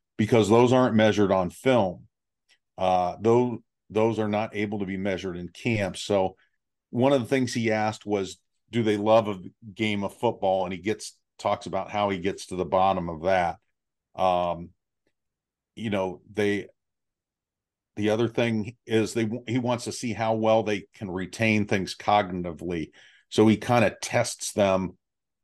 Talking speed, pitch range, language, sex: 165 wpm, 95-115 Hz, English, male